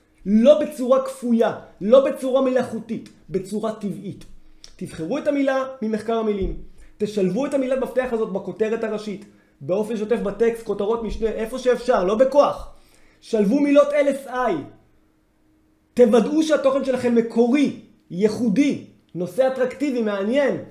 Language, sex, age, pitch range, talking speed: Hebrew, male, 20-39, 220-280 Hz, 115 wpm